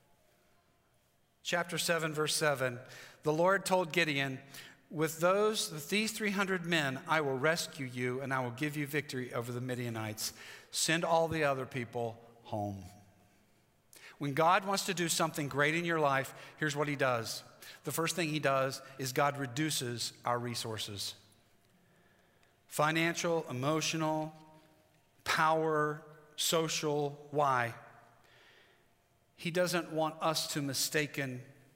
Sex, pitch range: male, 130-180 Hz